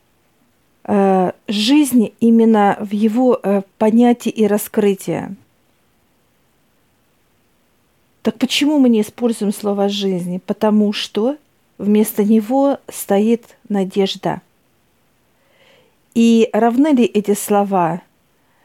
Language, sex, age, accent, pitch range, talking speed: Russian, female, 50-69, native, 200-235 Hz, 80 wpm